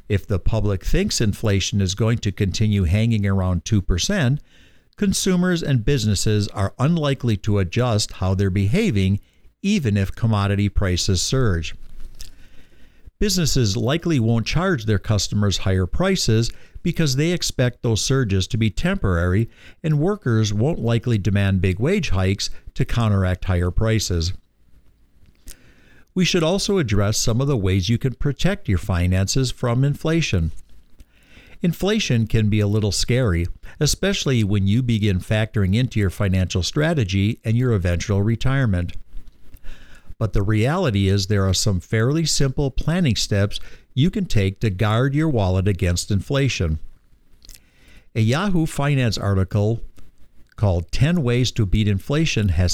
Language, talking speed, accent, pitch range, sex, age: English, 135 wpm, American, 95-130 Hz, male, 60-79